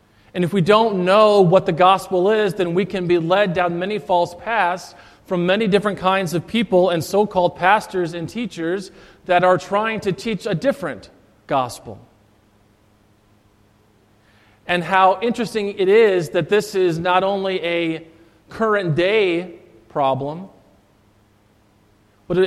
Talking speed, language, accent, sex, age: 135 wpm, English, American, male, 40-59